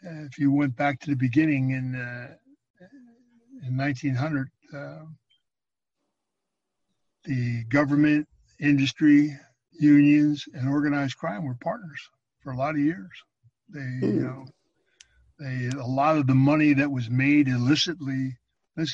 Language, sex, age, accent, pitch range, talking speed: English, male, 60-79, American, 130-150 Hz, 125 wpm